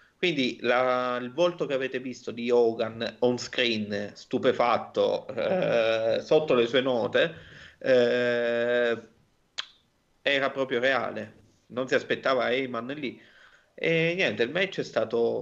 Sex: male